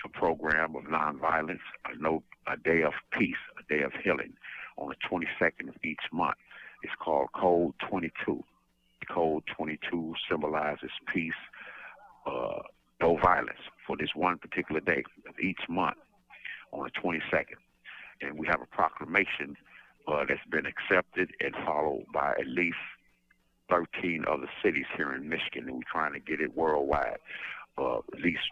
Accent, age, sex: American, 60-79, male